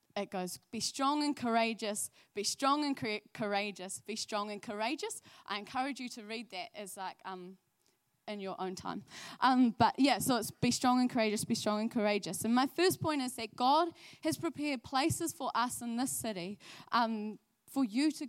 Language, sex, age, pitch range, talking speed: English, female, 10-29, 210-260 Hz, 195 wpm